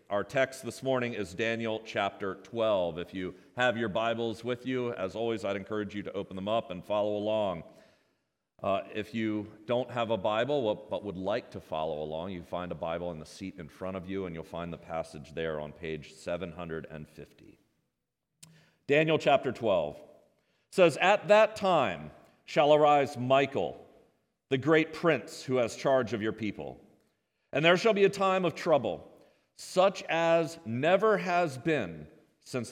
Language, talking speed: English, 170 wpm